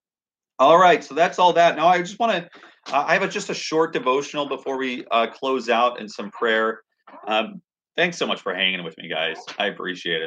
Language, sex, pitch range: English, male, 95-150 Hz